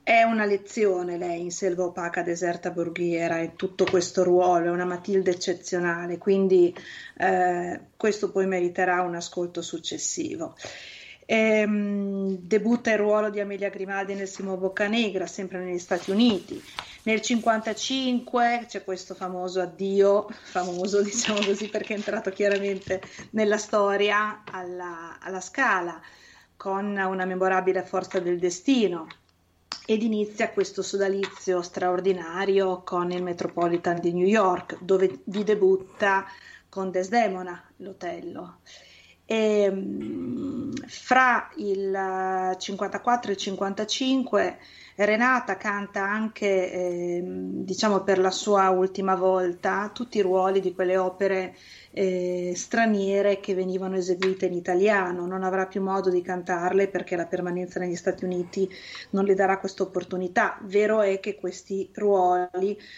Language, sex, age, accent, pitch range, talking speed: Italian, female, 30-49, native, 180-205 Hz, 125 wpm